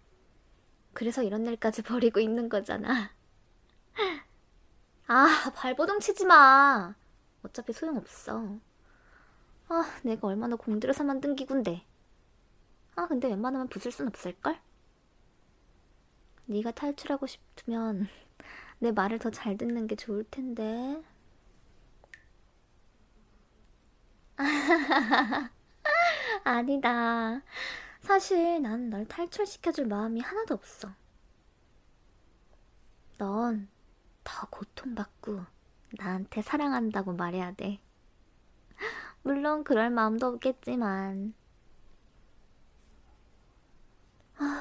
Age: 20-39